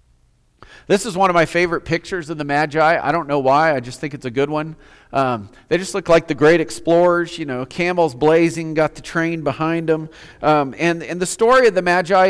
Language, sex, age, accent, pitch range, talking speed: English, male, 40-59, American, 130-175 Hz, 225 wpm